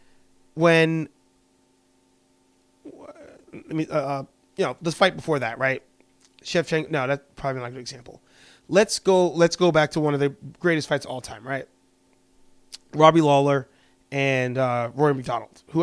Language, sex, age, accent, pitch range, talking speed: English, male, 30-49, American, 125-155 Hz, 160 wpm